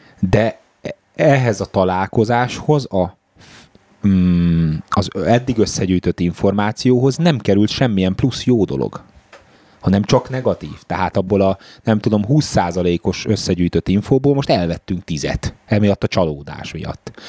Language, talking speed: Hungarian, 120 wpm